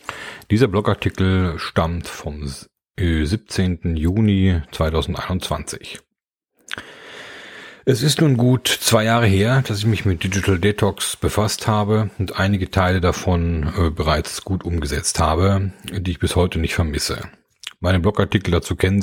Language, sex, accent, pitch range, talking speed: German, male, German, 85-100 Hz, 125 wpm